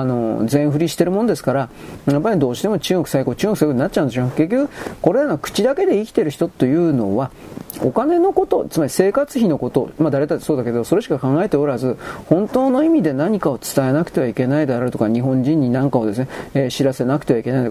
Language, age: Japanese, 40-59